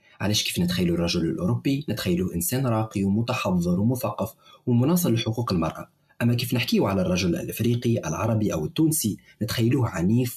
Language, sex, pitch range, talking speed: Arabic, male, 100-140 Hz, 140 wpm